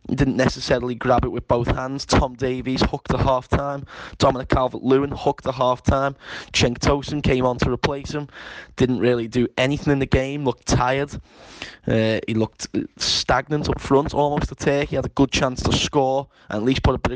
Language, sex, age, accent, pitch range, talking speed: English, male, 10-29, British, 120-135 Hz, 205 wpm